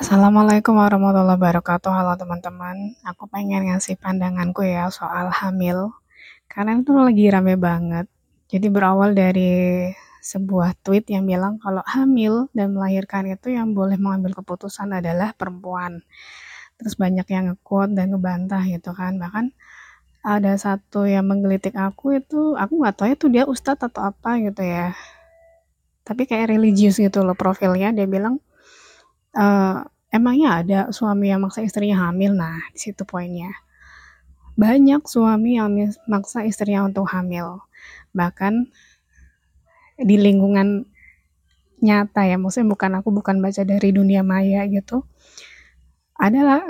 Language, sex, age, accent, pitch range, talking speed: Indonesian, female, 20-39, native, 190-225 Hz, 130 wpm